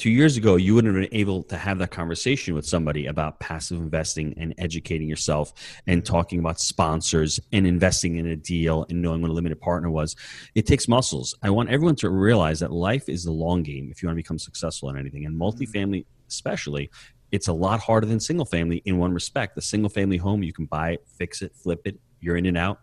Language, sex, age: English, male, 30-49